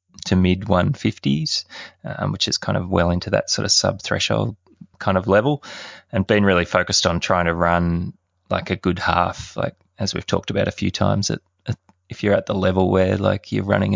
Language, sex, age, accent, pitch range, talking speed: English, male, 20-39, Australian, 90-100 Hz, 190 wpm